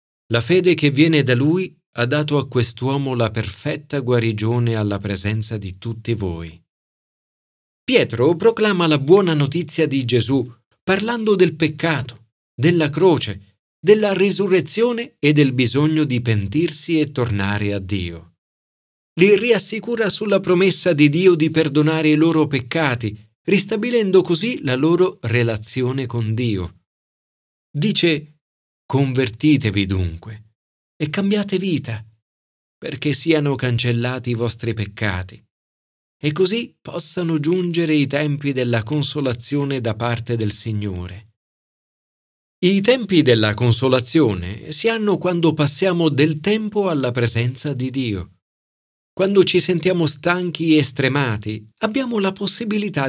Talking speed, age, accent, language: 120 wpm, 40-59, native, Italian